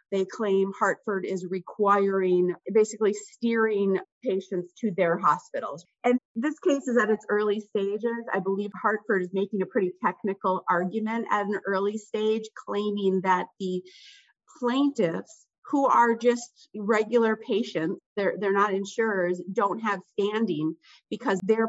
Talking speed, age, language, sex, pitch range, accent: 140 wpm, 30-49, English, female, 180-225 Hz, American